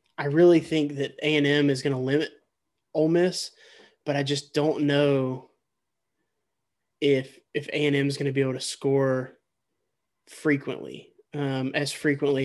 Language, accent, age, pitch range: English, American, 20-39, 135-150 Hz